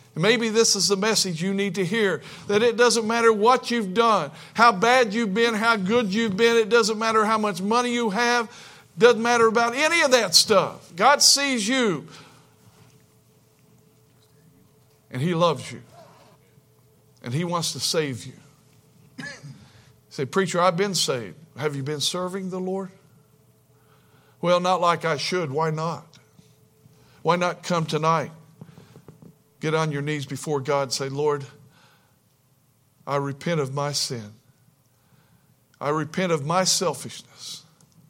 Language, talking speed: English, 150 wpm